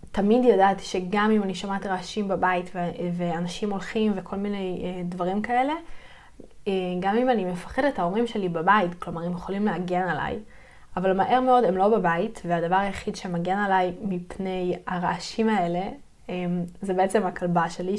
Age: 20-39